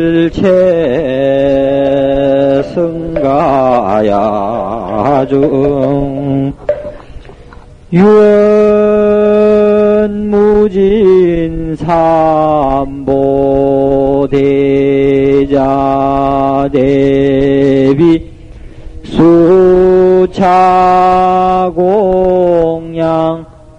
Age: 40-59